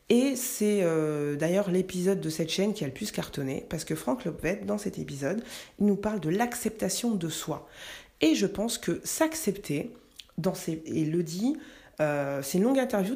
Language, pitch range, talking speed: French, 165-215 Hz, 195 wpm